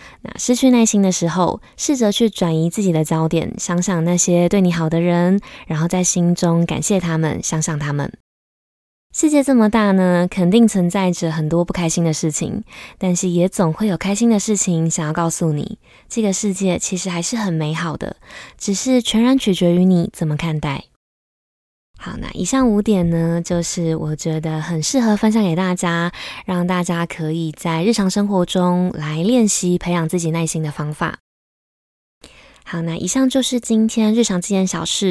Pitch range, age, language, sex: 170-205 Hz, 20-39, Chinese, female